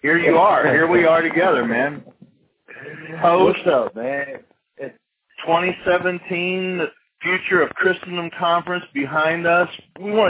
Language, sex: English, male